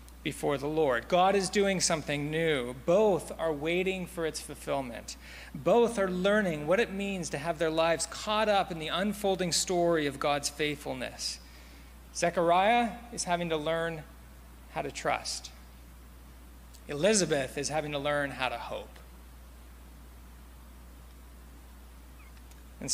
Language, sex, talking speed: English, male, 130 wpm